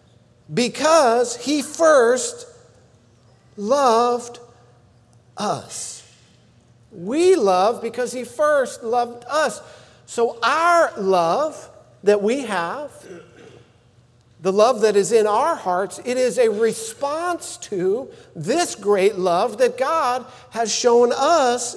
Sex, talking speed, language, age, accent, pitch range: male, 105 wpm, English, 50-69, American, 170-265 Hz